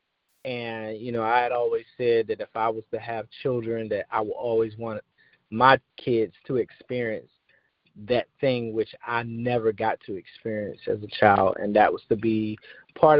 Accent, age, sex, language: American, 30-49, male, English